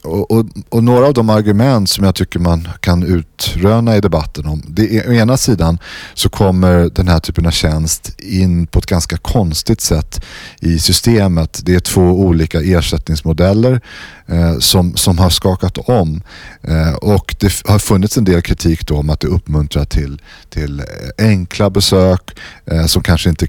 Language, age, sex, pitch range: Swedish, 30-49, male, 80-100 Hz